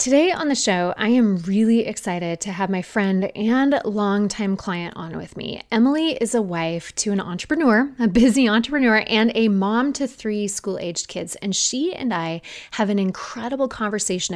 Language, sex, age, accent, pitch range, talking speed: English, female, 20-39, American, 195-260 Hz, 180 wpm